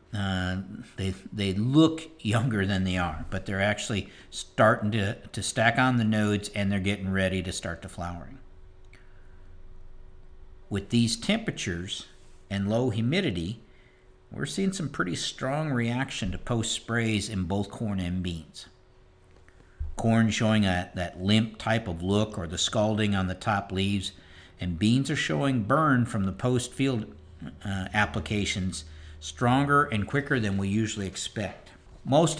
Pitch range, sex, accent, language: 95-120 Hz, male, American, English